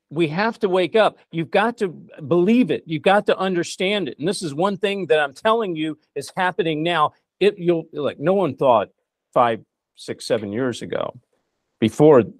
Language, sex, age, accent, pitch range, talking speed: English, male, 50-69, American, 155-215 Hz, 190 wpm